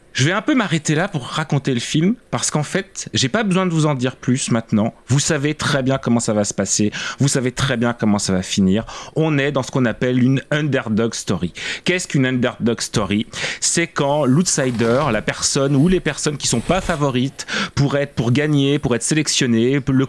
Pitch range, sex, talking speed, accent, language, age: 125-160 Hz, male, 215 wpm, French, French, 30-49